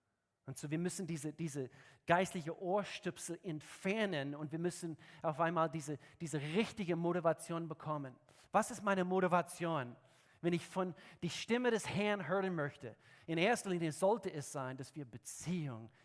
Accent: German